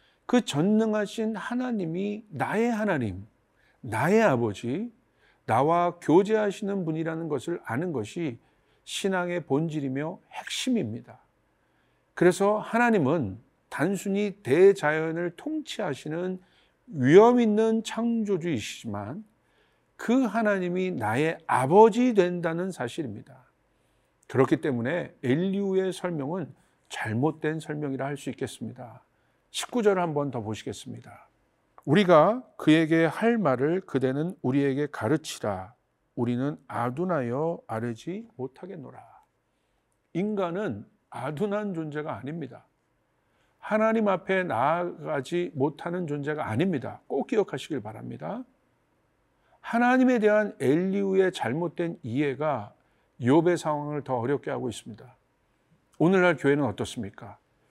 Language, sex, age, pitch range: Korean, male, 50-69, 140-205 Hz